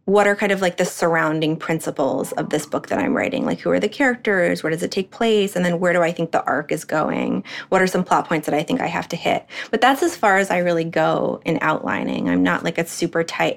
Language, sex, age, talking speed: English, female, 20-39, 275 wpm